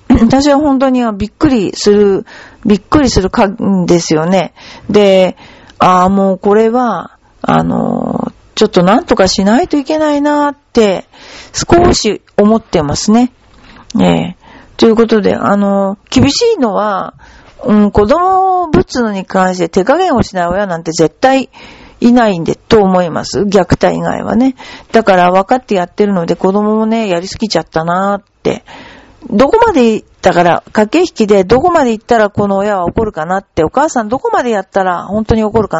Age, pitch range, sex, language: 40-59, 190-260 Hz, female, Japanese